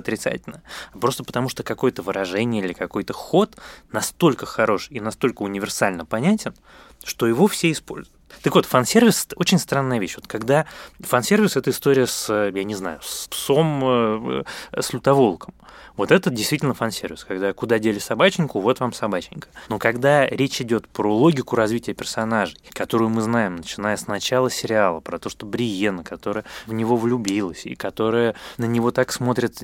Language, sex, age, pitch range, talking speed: Russian, male, 20-39, 110-140 Hz, 160 wpm